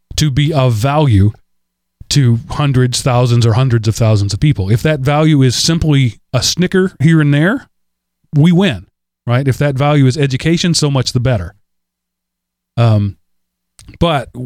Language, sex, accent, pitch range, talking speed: English, male, American, 100-150 Hz, 155 wpm